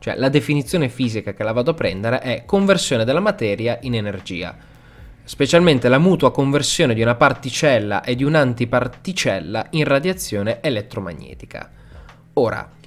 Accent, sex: native, male